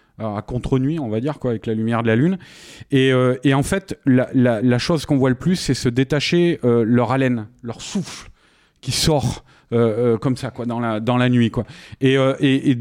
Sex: male